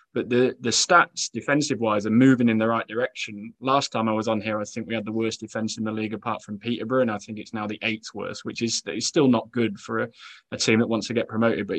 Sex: male